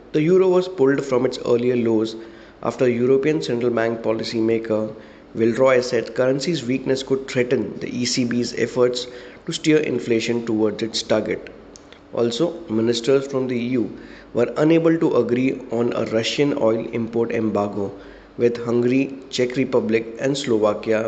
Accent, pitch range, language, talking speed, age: Indian, 115-130 Hz, English, 140 wpm, 20-39